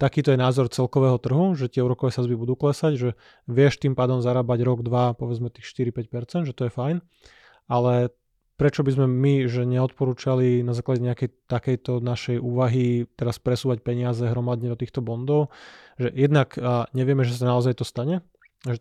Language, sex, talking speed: Slovak, male, 170 wpm